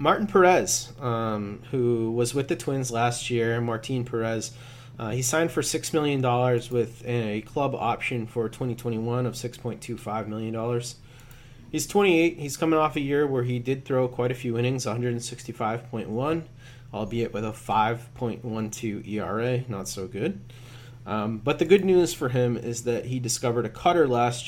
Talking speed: 160 wpm